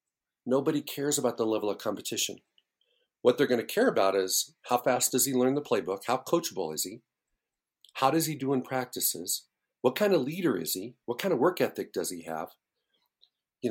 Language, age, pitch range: English, 50-69, 110-140 Hz